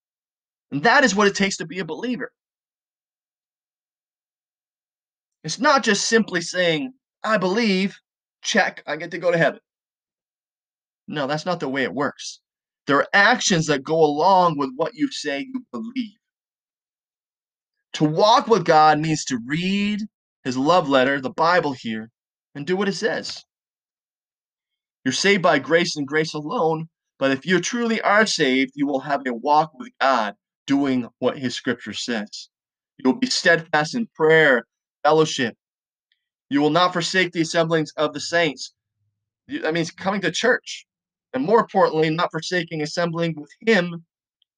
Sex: male